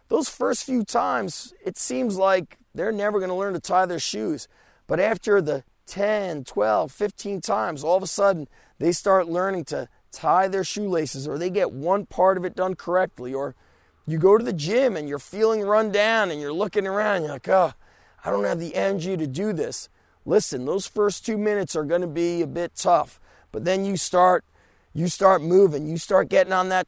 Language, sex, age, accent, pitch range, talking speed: English, male, 30-49, American, 145-195 Hz, 210 wpm